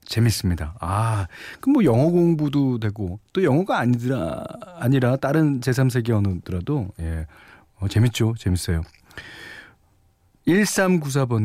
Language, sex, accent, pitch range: Korean, male, native, 95-140 Hz